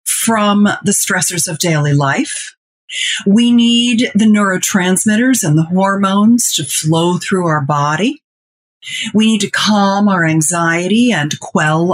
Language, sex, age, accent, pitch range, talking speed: English, female, 40-59, American, 170-220 Hz, 130 wpm